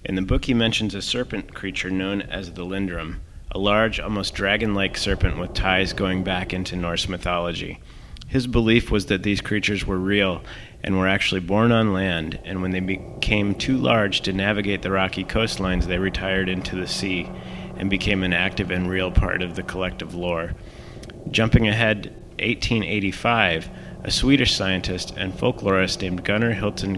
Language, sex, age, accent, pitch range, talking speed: English, male, 30-49, American, 95-105 Hz, 170 wpm